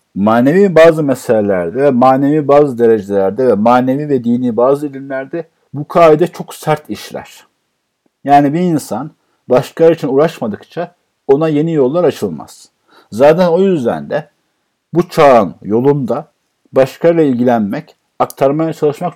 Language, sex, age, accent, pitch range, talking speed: Turkish, male, 50-69, native, 125-160 Hz, 120 wpm